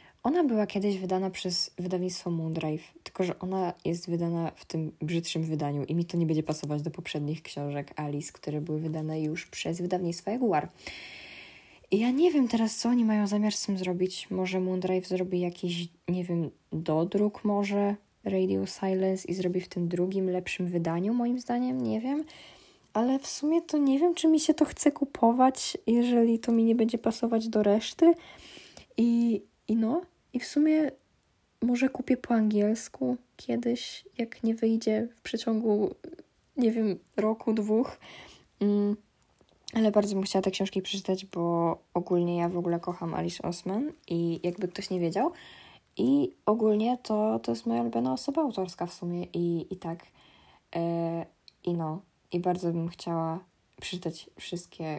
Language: Polish